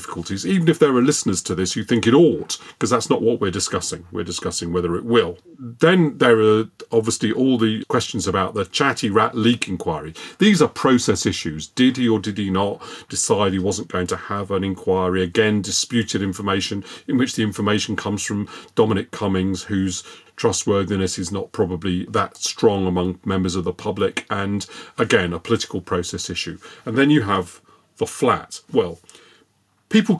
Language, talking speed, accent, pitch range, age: English, 180 wpm, British, 100-130 Hz, 40-59